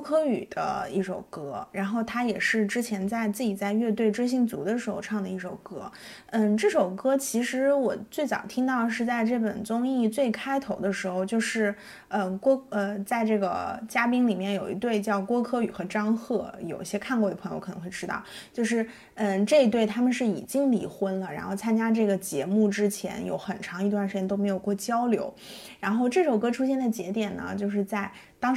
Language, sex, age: Chinese, female, 20-39